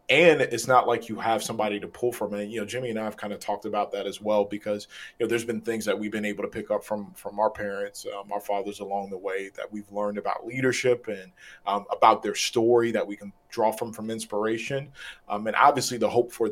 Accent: American